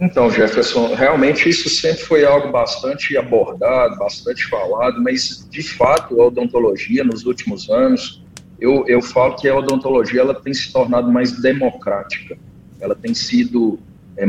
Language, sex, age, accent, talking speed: Portuguese, male, 40-59, Brazilian, 145 wpm